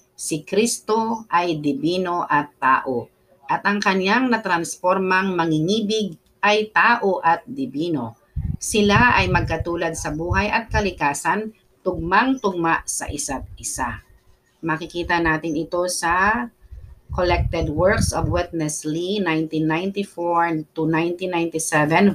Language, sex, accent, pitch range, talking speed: Filipino, female, native, 155-190 Hz, 100 wpm